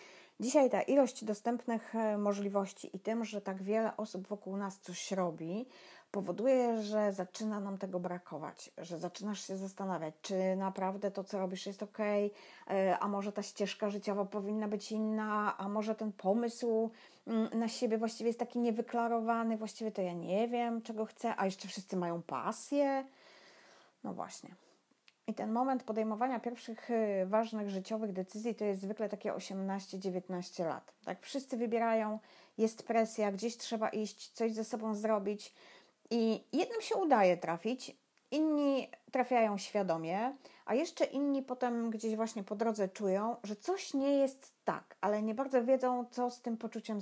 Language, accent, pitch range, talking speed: Polish, native, 195-235 Hz, 155 wpm